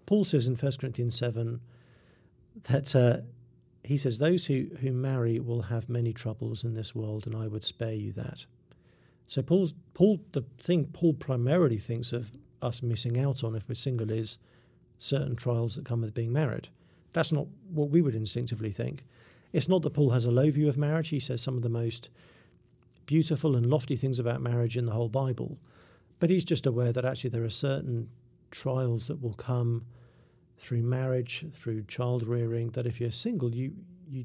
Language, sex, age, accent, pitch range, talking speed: English, male, 50-69, British, 120-140 Hz, 190 wpm